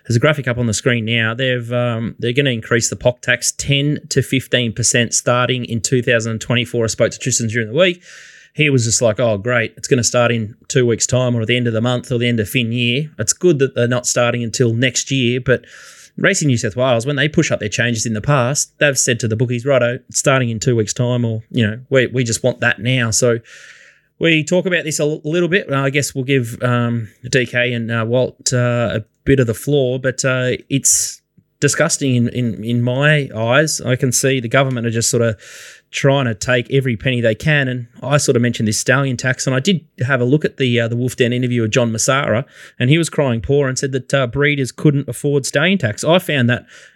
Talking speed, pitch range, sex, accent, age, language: 245 wpm, 120-140 Hz, male, Australian, 20-39, English